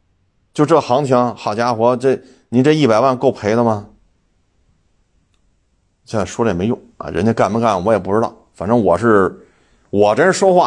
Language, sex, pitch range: Chinese, male, 90-135 Hz